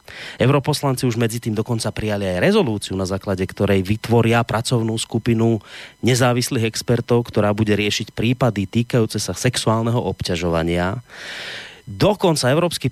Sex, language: male, Slovak